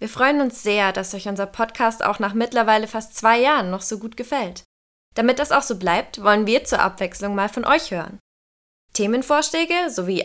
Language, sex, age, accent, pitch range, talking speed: German, female, 20-39, German, 185-245 Hz, 195 wpm